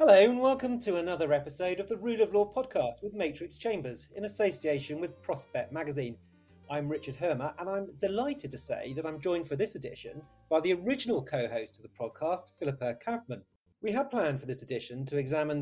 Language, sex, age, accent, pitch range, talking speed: English, male, 40-59, British, 135-200 Hz, 195 wpm